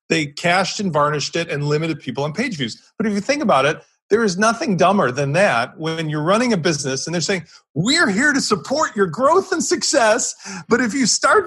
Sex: male